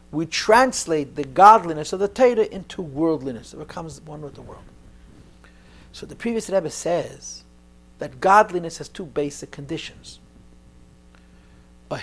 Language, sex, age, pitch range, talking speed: English, male, 60-79, 110-175 Hz, 135 wpm